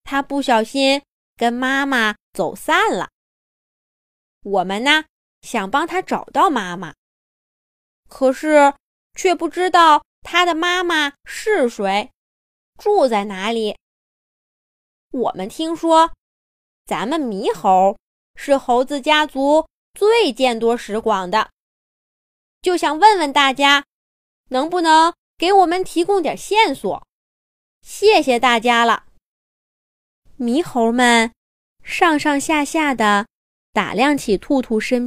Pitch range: 235-320 Hz